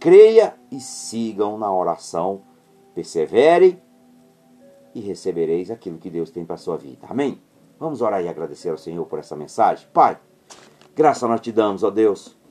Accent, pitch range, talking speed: Brazilian, 115-175 Hz, 160 wpm